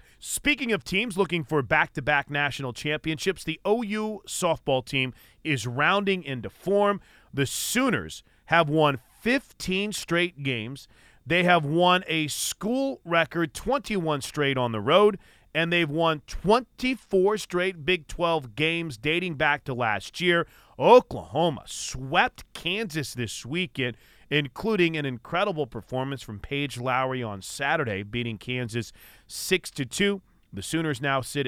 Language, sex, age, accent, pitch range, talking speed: English, male, 40-59, American, 130-175 Hz, 135 wpm